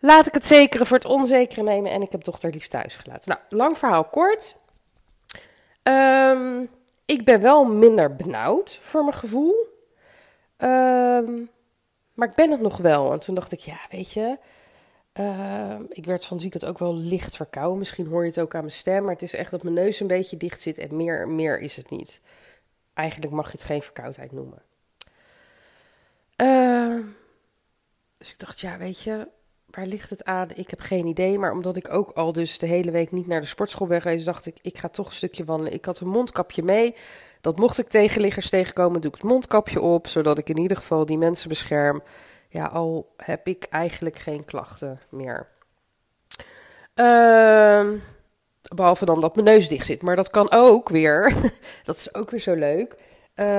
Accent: Dutch